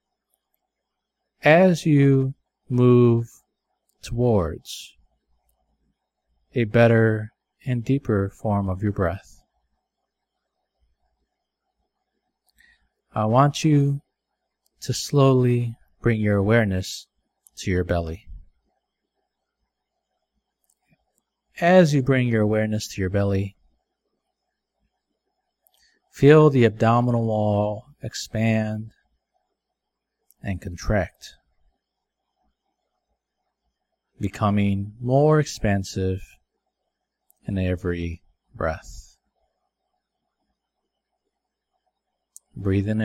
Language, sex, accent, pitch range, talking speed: English, male, American, 95-125 Hz, 65 wpm